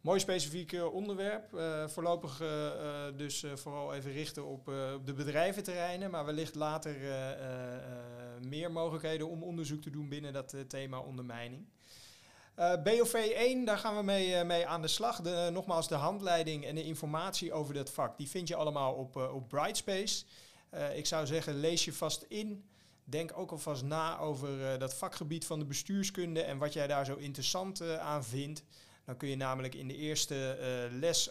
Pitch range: 135-175 Hz